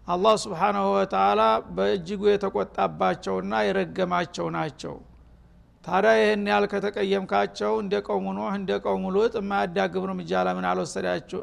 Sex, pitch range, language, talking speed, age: male, 180-215 Hz, Amharic, 100 wpm, 60-79